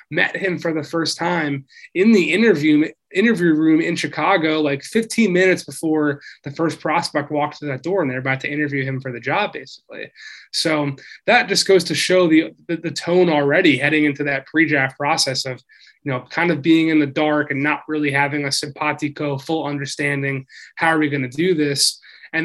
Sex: male